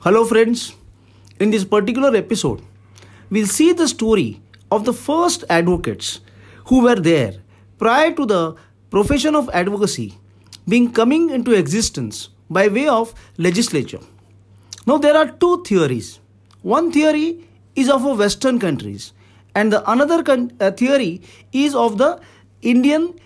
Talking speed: 130 wpm